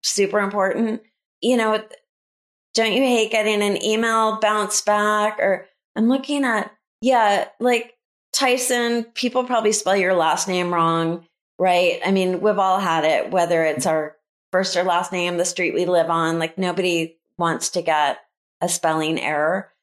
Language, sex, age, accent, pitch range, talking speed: English, female, 30-49, American, 185-235 Hz, 160 wpm